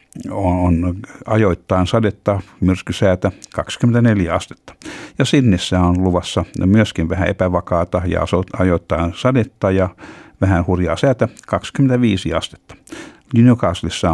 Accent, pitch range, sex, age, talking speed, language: native, 85-105 Hz, male, 60-79, 100 wpm, Finnish